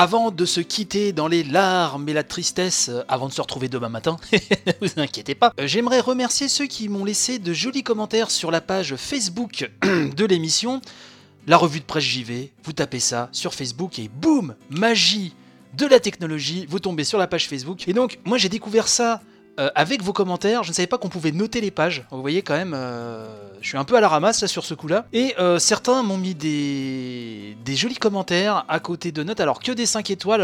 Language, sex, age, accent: French, male, 30-49, French